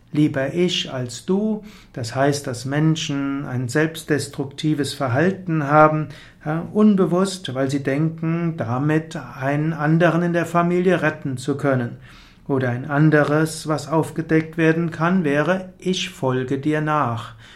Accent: German